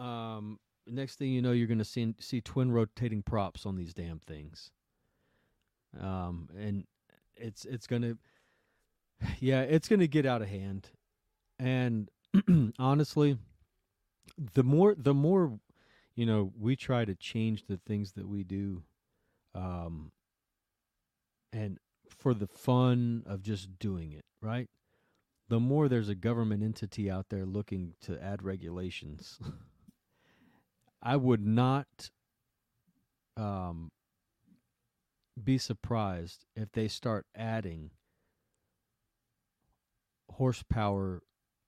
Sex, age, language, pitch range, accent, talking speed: male, 40-59, English, 95-120 Hz, American, 115 wpm